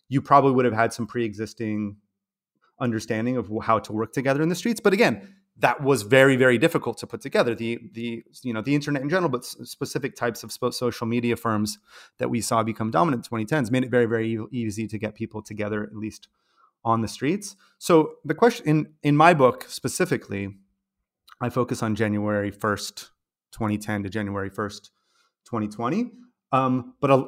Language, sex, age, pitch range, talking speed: English, male, 30-49, 110-140 Hz, 185 wpm